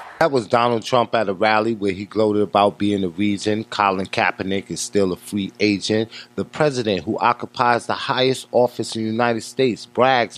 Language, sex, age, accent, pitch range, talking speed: English, male, 30-49, American, 105-120 Hz, 190 wpm